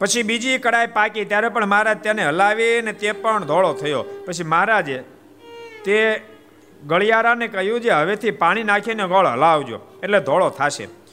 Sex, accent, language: male, native, Gujarati